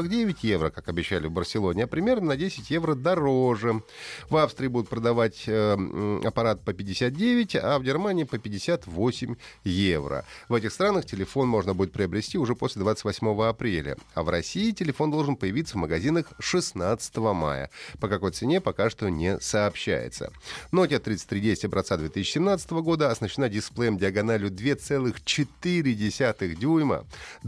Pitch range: 95-145 Hz